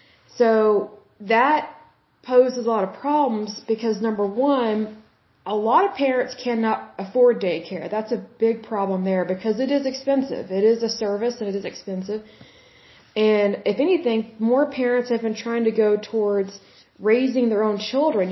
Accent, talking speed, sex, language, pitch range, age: American, 160 wpm, female, Bengali, 200-235 Hz, 20-39